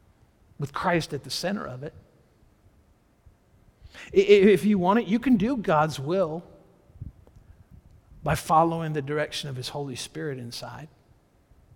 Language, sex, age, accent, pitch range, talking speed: English, male, 50-69, American, 125-180 Hz, 130 wpm